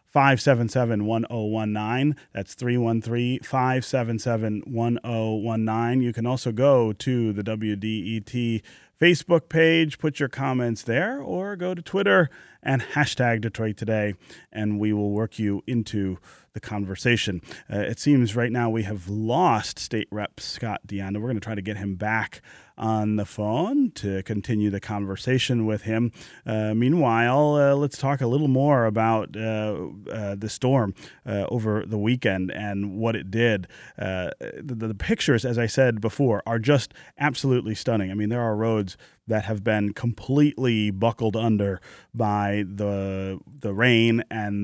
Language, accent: English, American